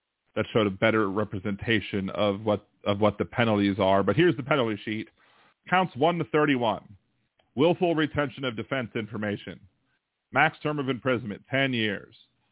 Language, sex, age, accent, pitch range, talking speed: English, male, 40-59, American, 105-150 Hz, 155 wpm